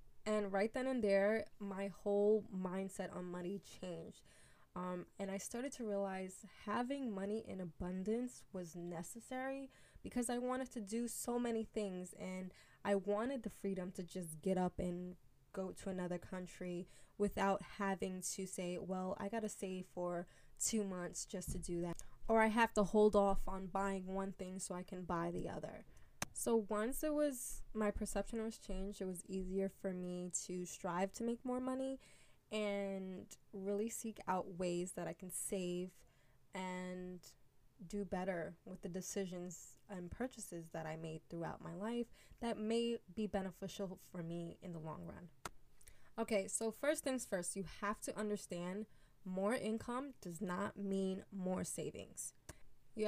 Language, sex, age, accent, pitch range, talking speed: English, female, 10-29, American, 180-215 Hz, 165 wpm